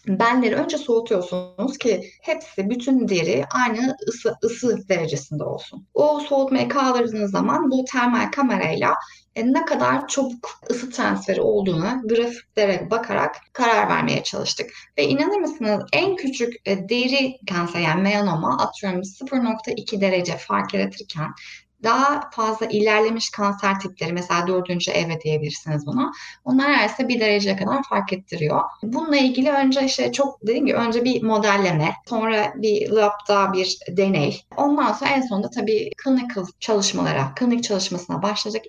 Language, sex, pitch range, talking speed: Turkish, female, 190-260 Hz, 130 wpm